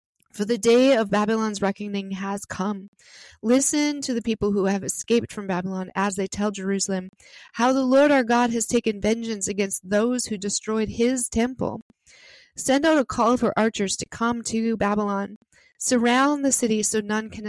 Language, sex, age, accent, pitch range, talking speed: English, female, 20-39, American, 200-240 Hz, 175 wpm